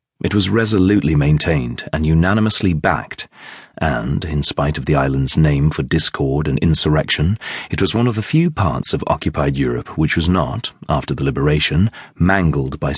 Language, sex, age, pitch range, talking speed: English, male, 40-59, 75-100 Hz, 165 wpm